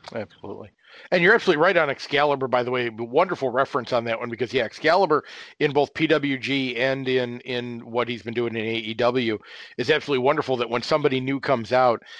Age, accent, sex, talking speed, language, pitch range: 40-59, American, male, 190 wpm, English, 115-140 Hz